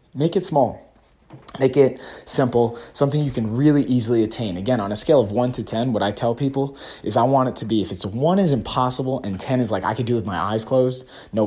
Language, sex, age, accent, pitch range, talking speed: English, male, 30-49, American, 100-125 Hz, 245 wpm